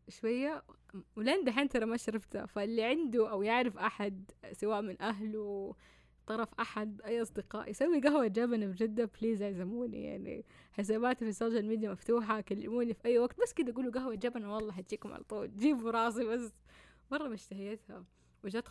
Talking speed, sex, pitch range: 160 wpm, female, 190-230 Hz